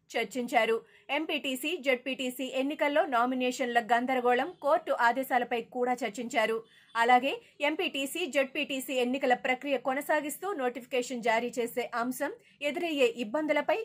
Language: Telugu